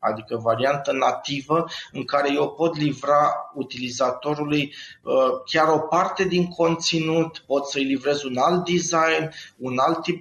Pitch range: 125-145 Hz